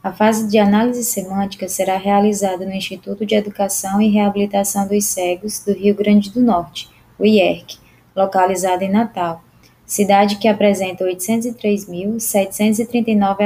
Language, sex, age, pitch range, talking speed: Portuguese, female, 20-39, 190-225 Hz, 130 wpm